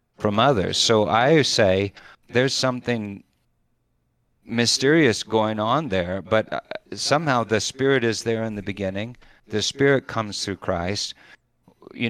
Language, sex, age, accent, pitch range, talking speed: English, male, 40-59, American, 105-130 Hz, 130 wpm